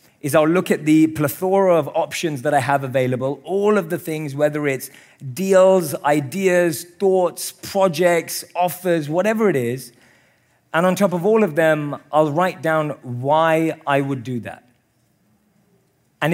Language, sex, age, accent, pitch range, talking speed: English, male, 30-49, British, 135-175 Hz, 155 wpm